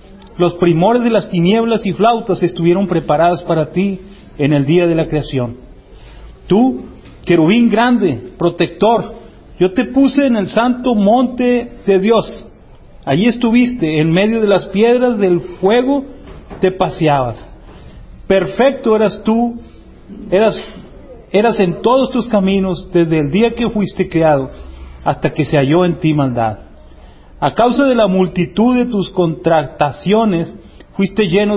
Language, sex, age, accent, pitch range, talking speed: Spanish, male, 40-59, Mexican, 170-225 Hz, 140 wpm